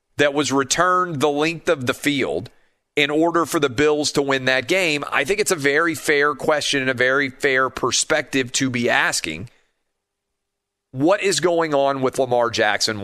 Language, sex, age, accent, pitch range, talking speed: English, male, 40-59, American, 120-155 Hz, 180 wpm